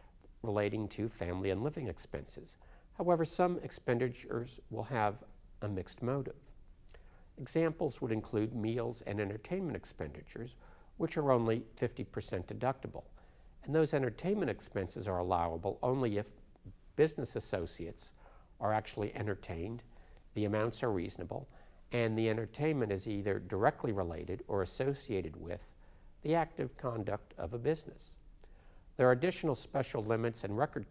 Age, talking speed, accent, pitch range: 60-79, 130 wpm, American, 90-120 Hz